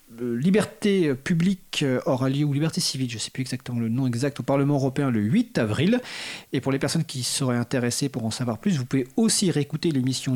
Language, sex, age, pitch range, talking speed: French, male, 40-59, 125-175 Hz, 210 wpm